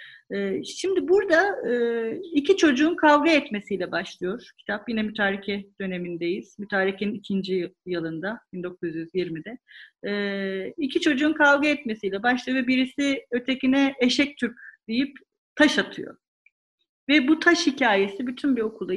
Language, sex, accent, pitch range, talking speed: Turkish, female, native, 195-265 Hz, 110 wpm